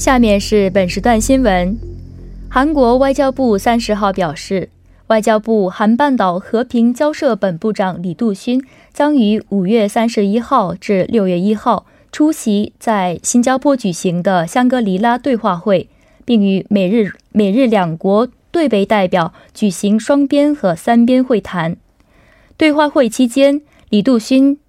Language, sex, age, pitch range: Korean, female, 20-39, 200-265 Hz